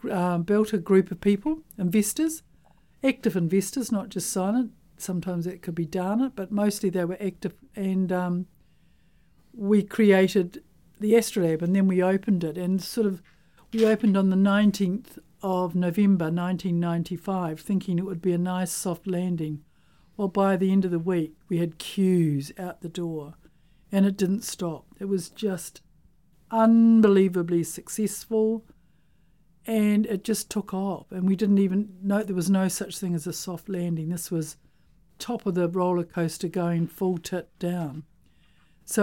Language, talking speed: English, 170 wpm